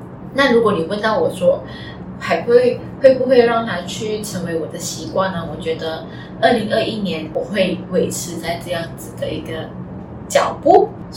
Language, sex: Chinese, female